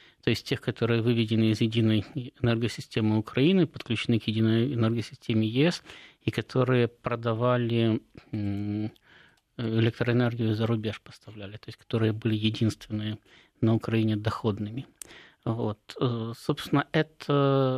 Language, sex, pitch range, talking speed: Russian, male, 115-140 Hz, 110 wpm